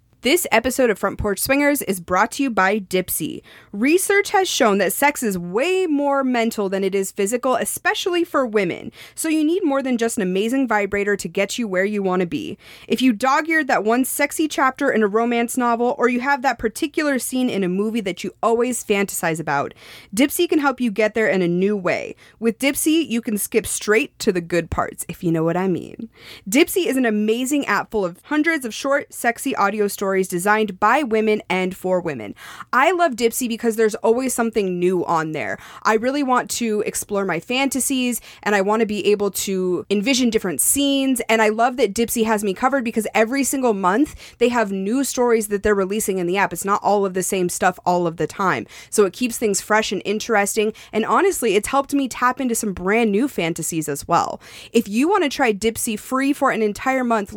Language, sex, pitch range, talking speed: English, female, 200-265 Hz, 215 wpm